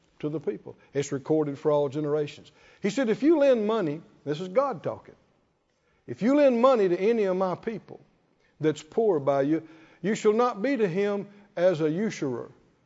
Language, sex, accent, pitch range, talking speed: English, male, American, 175-255 Hz, 185 wpm